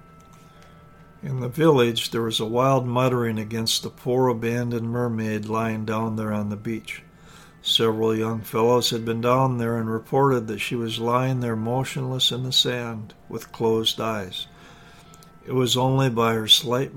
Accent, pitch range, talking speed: American, 110-130 Hz, 165 wpm